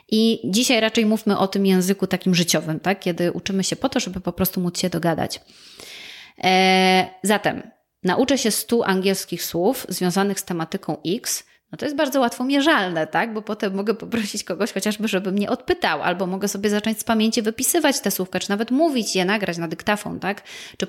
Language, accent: Polish, native